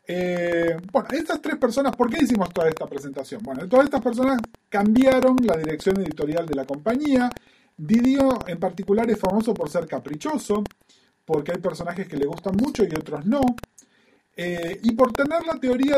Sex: male